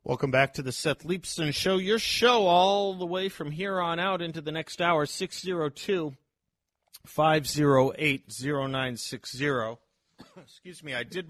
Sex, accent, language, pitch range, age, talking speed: male, American, English, 100-135 Hz, 40-59, 140 wpm